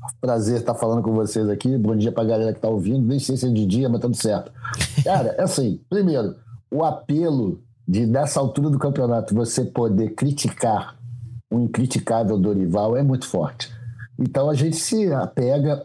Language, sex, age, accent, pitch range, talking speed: Portuguese, male, 50-69, Brazilian, 120-165 Hz, 180 wpm